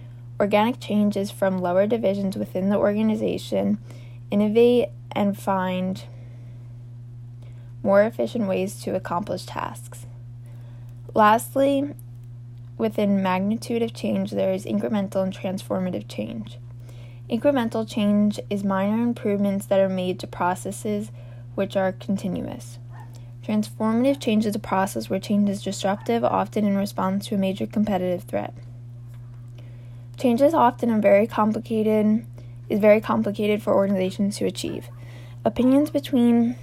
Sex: female